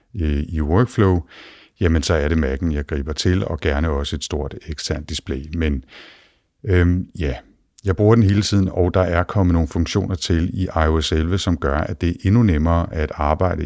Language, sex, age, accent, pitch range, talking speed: Danish, male, 60-79, native, 75-90 Hz, 195 wpm